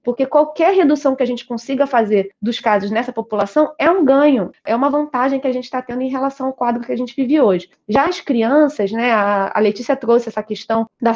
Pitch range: 225-290 Hz